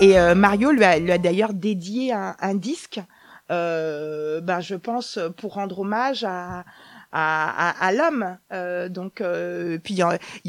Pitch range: 195-285 Hz